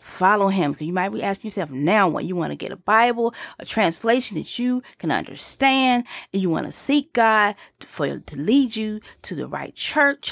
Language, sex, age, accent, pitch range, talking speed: English, female, 30-49, American, 160-225 Hz, 205 wpm